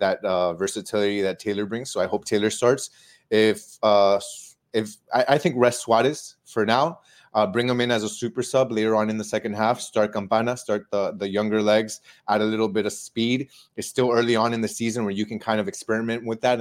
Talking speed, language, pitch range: 230 wpm, English, 100-115 Hz